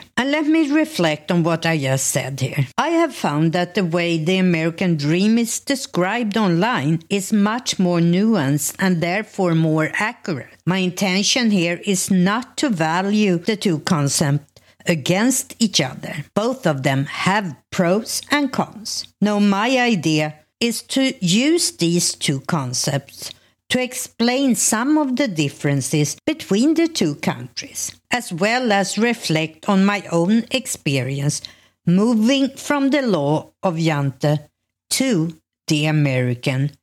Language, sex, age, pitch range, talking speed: English, female, 60-79, 150-220 Hz, 140 wpm